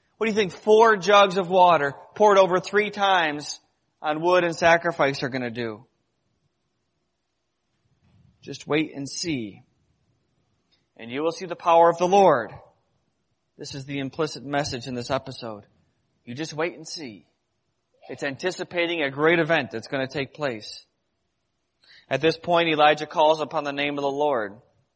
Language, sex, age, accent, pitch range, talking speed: English, male, 30-49, American, 135-170 Hz, 160 wpm